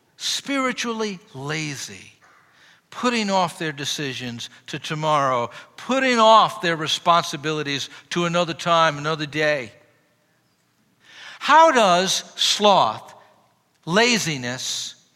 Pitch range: 150-220 Hz